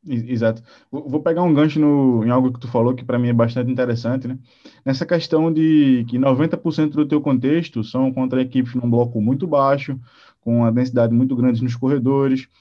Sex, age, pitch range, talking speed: male, 20-39, 120-150 Hz, 190 wpm